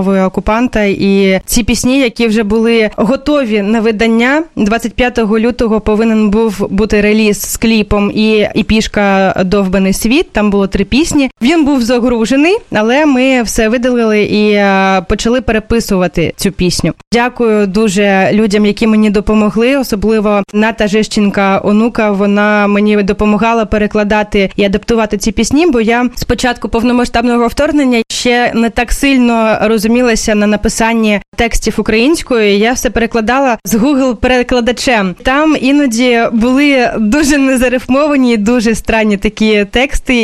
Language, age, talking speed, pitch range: Ukrainian, 20-39, 130 wpm, 215-245 Hz